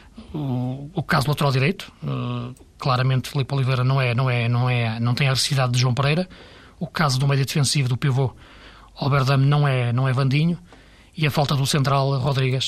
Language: Portuguese